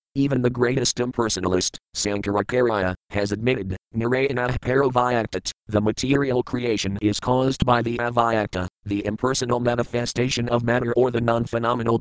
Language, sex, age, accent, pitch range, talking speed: English, male, 50-69, American, 105-125 Hz, 130 wpm